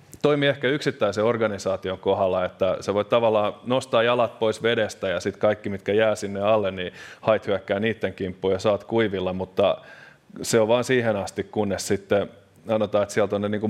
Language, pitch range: Finnish, 95-110 Hz